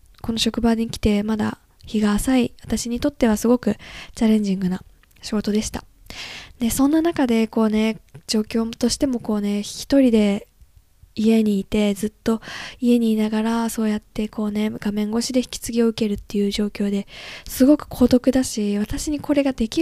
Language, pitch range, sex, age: Japanese, 205-260 Hz, female, 10-29